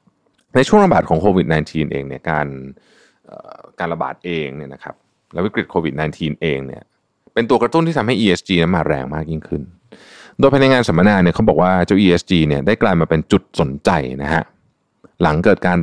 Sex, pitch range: male, 80-115 Hz